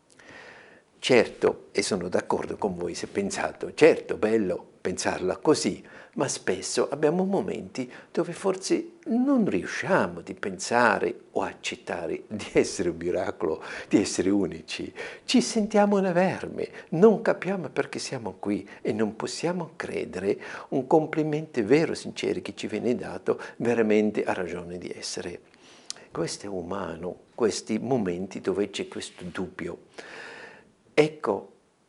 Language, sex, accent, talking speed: Italian, male, native, 130 wpm